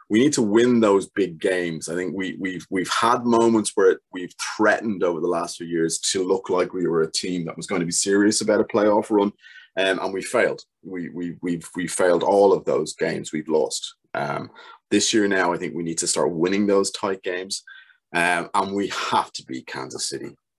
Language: English